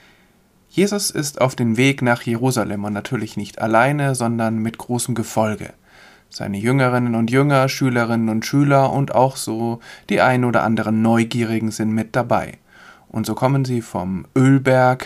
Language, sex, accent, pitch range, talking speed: German, male, German, 110-135 Hz, 155 wpm